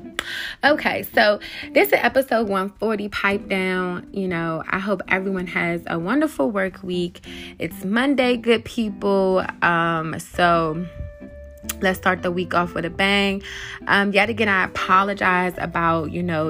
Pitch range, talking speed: 175-215 Hz, 145 wpm